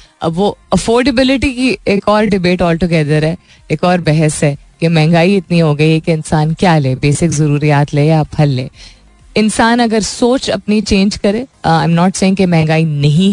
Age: 20-39